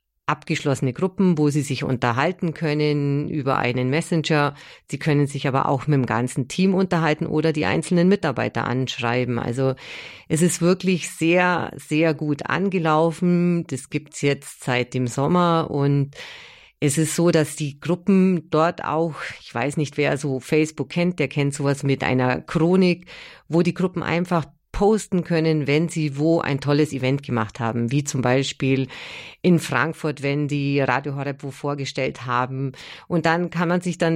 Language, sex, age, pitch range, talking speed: German, female, 40-59, 140-170 Hz, 165 wpm